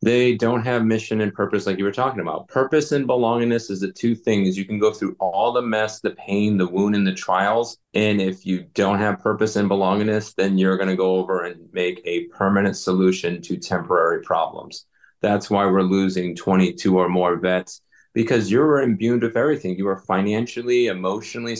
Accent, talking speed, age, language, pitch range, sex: American, 200 wpm, 30-49, English, 95-115 Hz, male